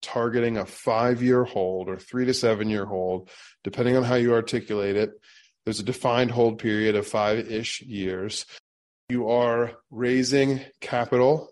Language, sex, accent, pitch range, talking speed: English, male, American, 105-125 Hz, 140 wpm